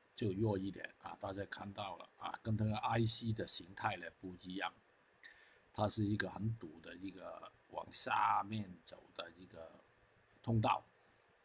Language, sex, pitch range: Chinese, male, 95-115 Hz